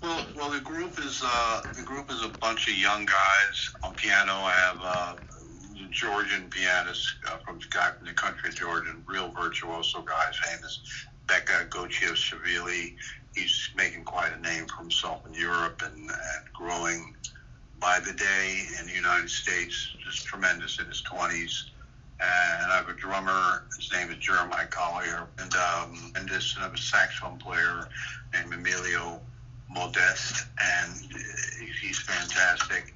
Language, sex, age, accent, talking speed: English, male, 60-79, American, 150 wpm